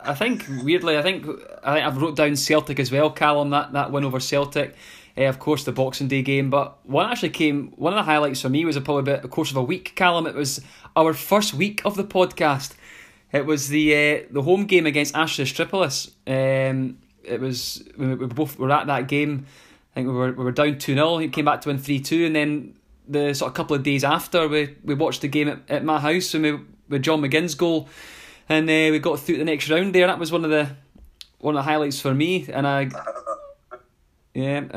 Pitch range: 140-160 Hz